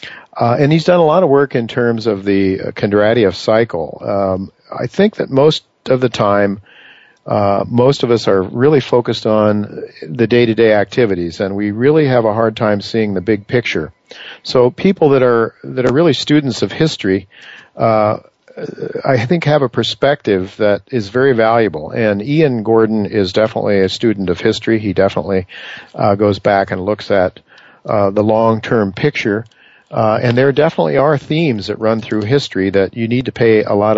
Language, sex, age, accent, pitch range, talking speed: English, male, 50-69, American, 105-125 Hz, 180 wpm